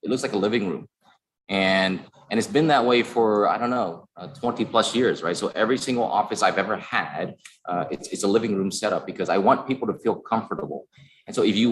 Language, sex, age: Vietnamese, male, 30-49